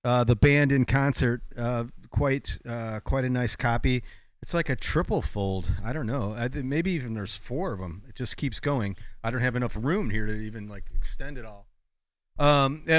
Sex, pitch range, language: male, 115-155 Hz, English